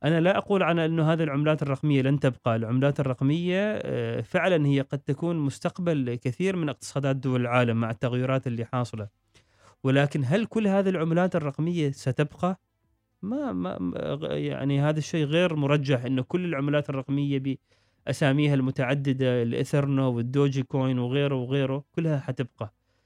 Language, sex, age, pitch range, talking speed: Arabic, male, 30-49, 130-160 Hz, 140 wpm